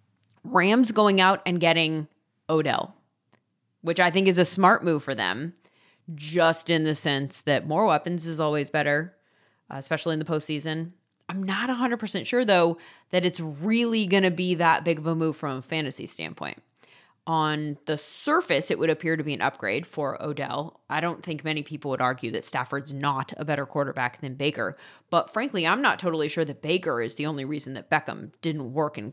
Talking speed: 190 wpm